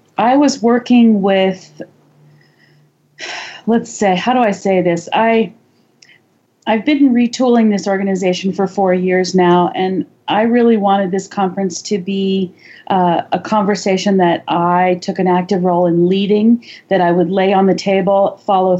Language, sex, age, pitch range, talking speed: English, female, 40-59, 180-210 Hz, 155 wpm